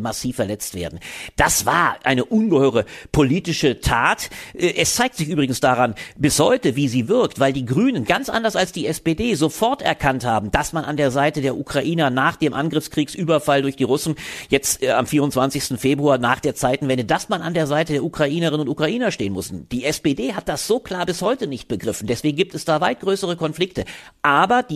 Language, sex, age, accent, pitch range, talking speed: German, male, 50-69, German, 135-165 Hz, 195 wpm